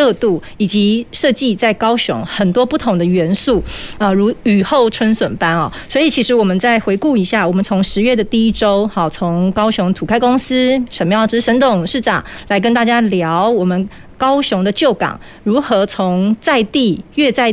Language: Chinese